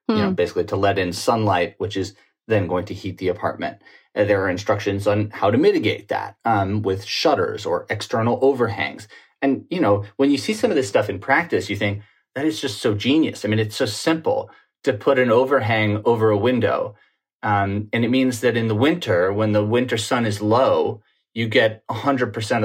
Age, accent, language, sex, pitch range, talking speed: 30-49, American, English, male, 105-125 Hz, 205 wpm